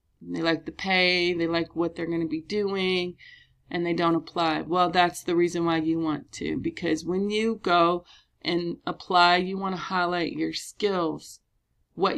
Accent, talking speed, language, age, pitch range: American, 180 wpm, English, 30-49, 170-200 Hz